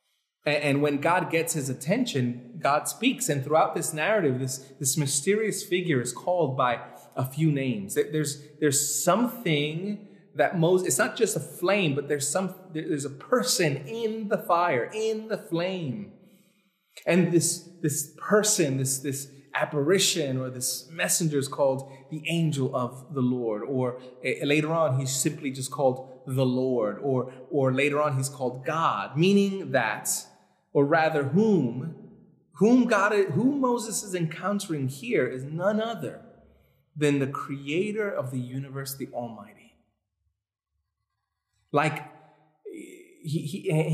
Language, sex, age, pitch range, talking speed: English, male, 30-49, 140-195 Hz, 140 wpm